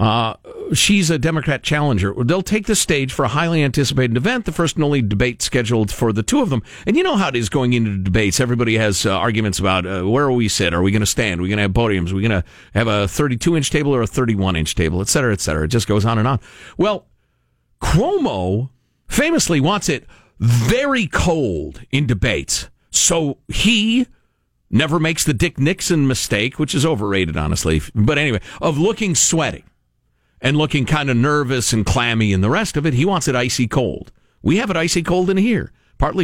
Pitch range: 105-175 Hz